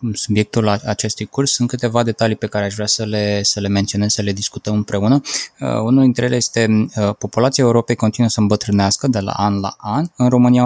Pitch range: 105-125 Hz